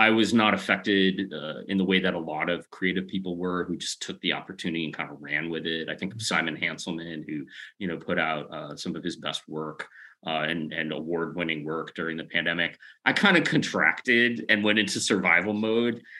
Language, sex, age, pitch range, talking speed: English, male, 30-49, 80-105 Hz, 220 wpm